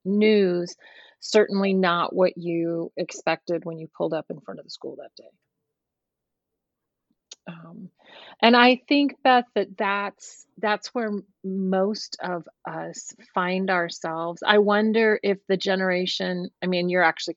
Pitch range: 170-200 Hz